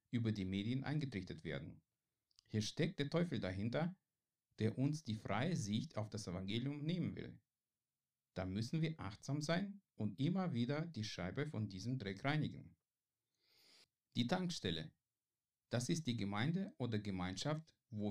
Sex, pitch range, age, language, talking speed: male, 105-150 Hz, 50-69, German, 145 wpm